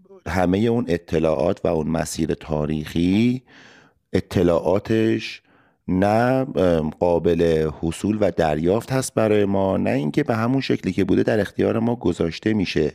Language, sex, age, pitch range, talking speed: Persian, male, 30-49, 80-110 Hz, 130 wpm